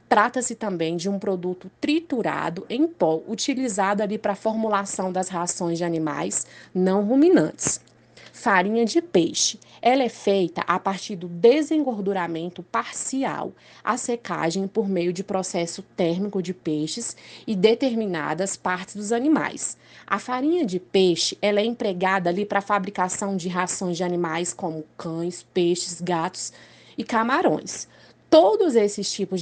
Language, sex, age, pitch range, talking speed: Portuguese, female, 20-39, 175-230 Hz, 135 wpm